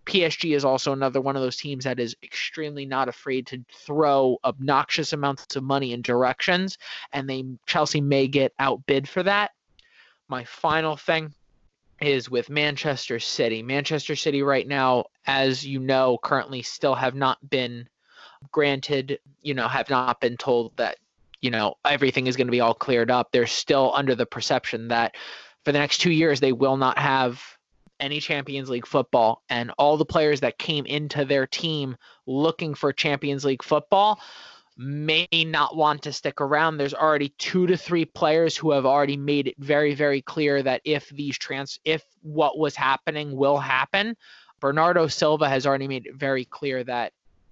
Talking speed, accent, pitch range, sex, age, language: 175 wpm, American, 135-155 Hz, male, 20-39, English